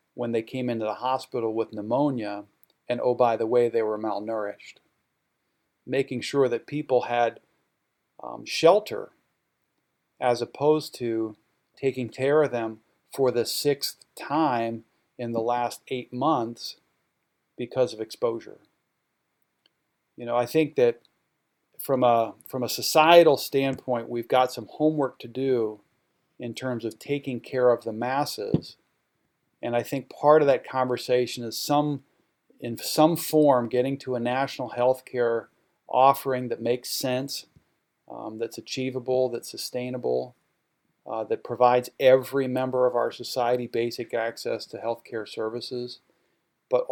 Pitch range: 115-135 Hz